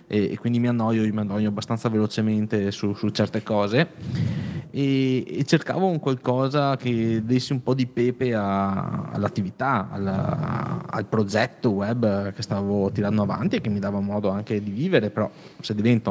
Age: 20-39